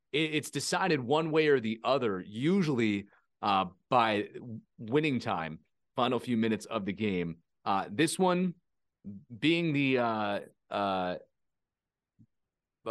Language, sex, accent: English, male, American